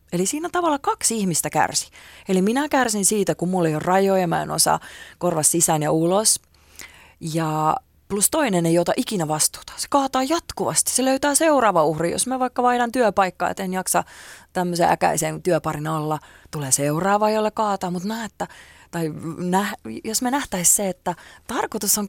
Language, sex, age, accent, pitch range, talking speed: Finnish, female, 30-49, native, 165-230 Hz, 160 wpm